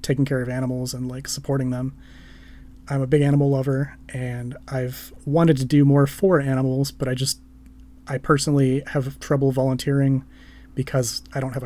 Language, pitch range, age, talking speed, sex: English, 125-140 Hz, 30-49, 170 wpm, male